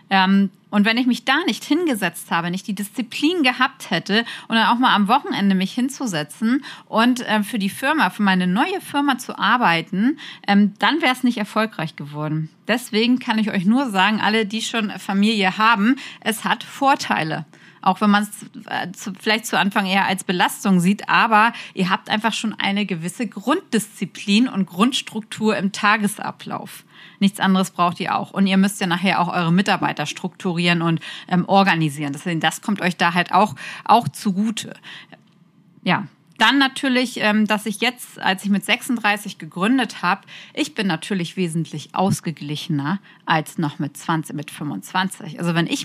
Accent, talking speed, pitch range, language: German, 165 wpm, 180-230 Hz, German